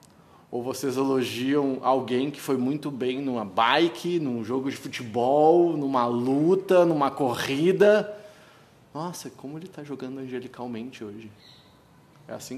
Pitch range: 115-145 Hz